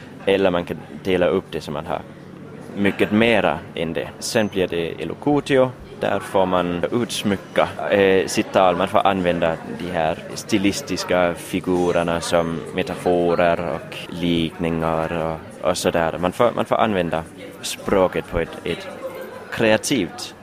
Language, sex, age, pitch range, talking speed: Finnish, male, 20-39, 85-105 Hz, 140 wpm